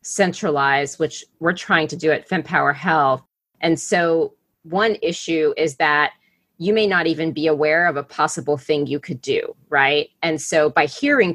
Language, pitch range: English, 150-185 Hz